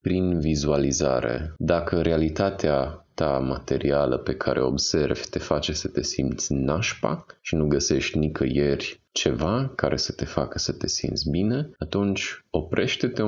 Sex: male